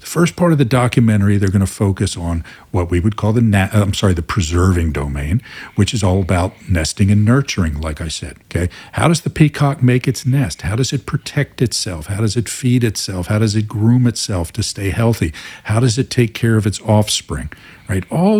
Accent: American